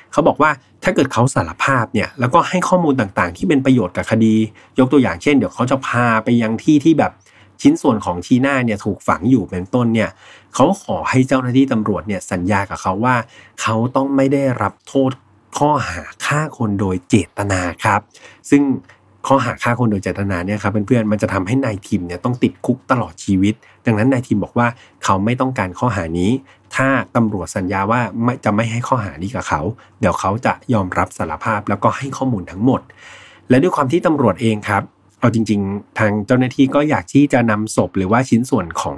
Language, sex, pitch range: Thai, male, 100-130 Hz